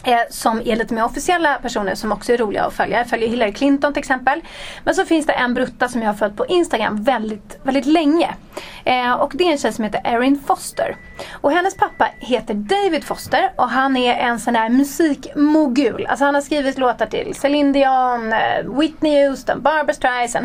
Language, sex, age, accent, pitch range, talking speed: English, female, 30-49, Swedish, 230-305 Hz, 195 wpm